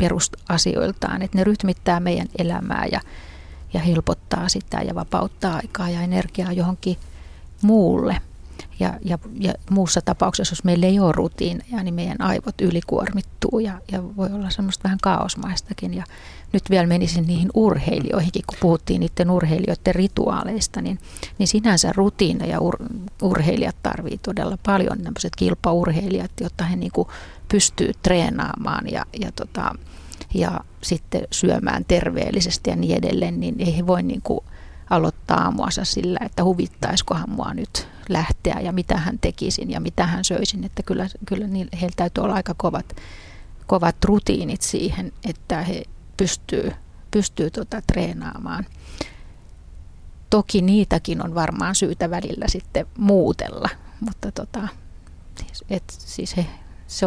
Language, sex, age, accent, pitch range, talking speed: Finnish, female, 30-49, native, 170-195 Hz, 125 wpm